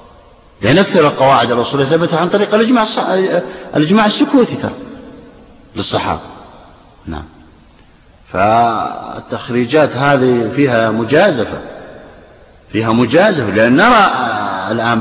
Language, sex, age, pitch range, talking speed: Arabic, male, 50-69, 140-230 Hz, 80 wpm